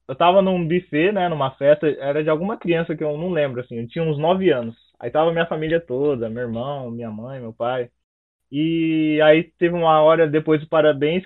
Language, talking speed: Portuguese, 215 wpm